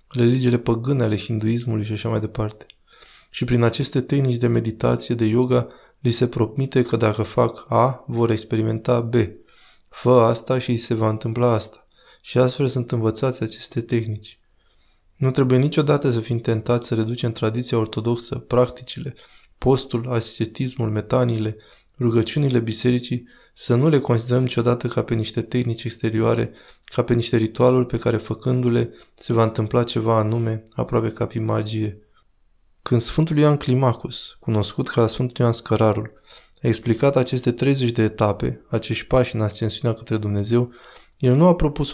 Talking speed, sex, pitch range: 155 wpm, male, 110-125 Hz